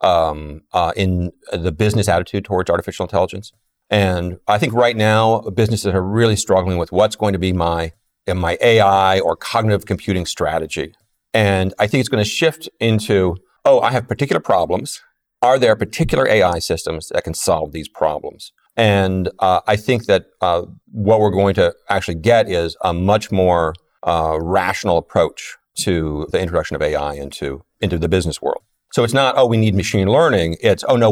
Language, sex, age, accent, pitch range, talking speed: English, male, 40-59, American, 90-110 Hz, 180 wpm